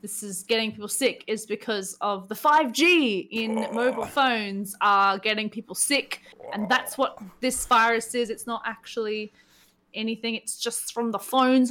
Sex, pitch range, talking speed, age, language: female, 210-255 Hz, 165 wpm, 20-39, English